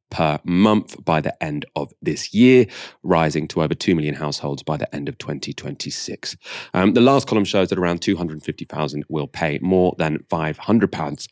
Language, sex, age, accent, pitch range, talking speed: English, male, 30-49, British, 85-110 Hz, 175 wpm